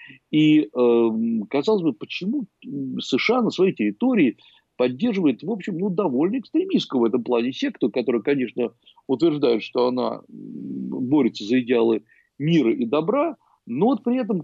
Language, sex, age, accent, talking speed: Russian, male, 50-69, native, 130 wpm